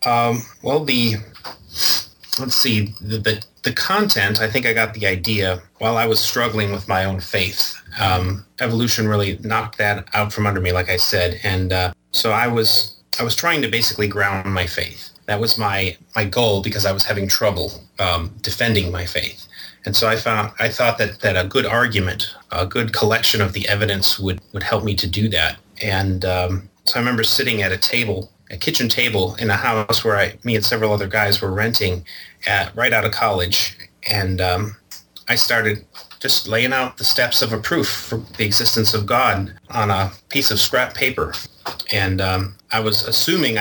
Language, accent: English, American